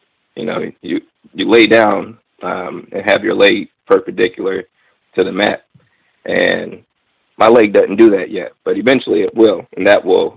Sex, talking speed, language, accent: male, 170 wpm, English, American